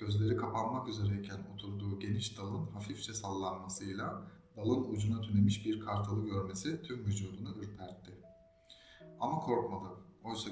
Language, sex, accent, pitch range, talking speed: Turkish, male, native, 95-110 Hz, 115 wpm